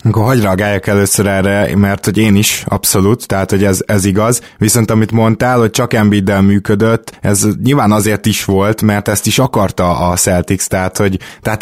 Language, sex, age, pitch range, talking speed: Hungarian, male, 20-39, 95-105 Hz, 185 wpm